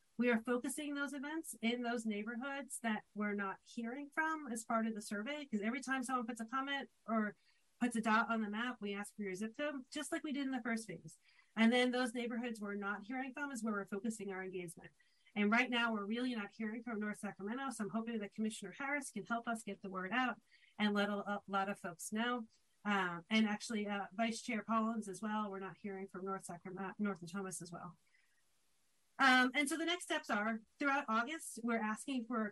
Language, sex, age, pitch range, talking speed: English, female, 40-59, 205-250 Hz, 225 wpm